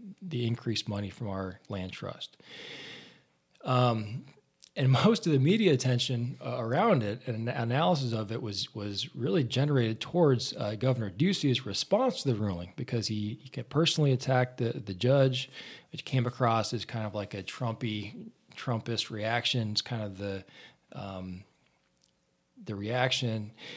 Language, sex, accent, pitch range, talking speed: English, male, American, 105-130 Hz, 150 wpm